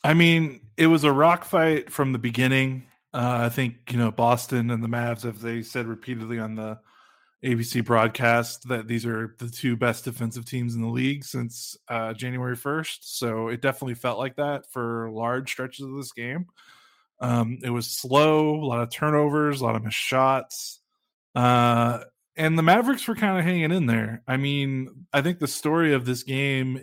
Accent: American